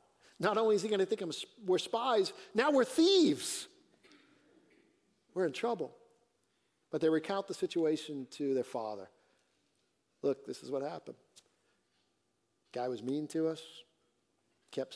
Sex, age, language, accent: male, 50-69, English, American